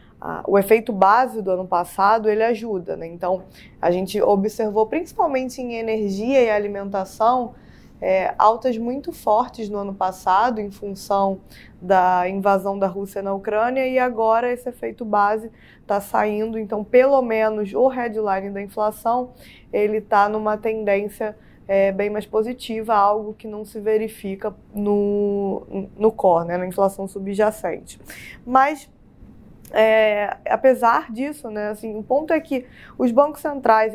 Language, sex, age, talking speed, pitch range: Portuguese, female, 20-39, 140 wpm, 195-230 Hz